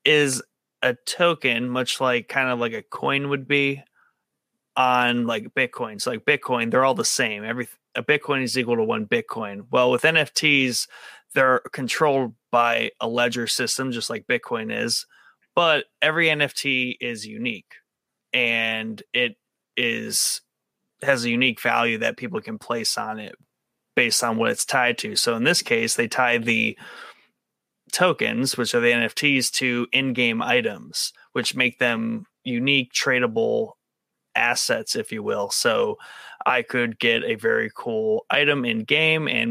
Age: 30-49